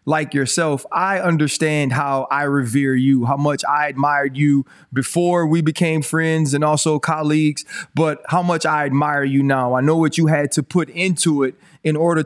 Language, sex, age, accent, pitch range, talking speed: English, male, 30-49, American, 145-180 Hz, 185 wpm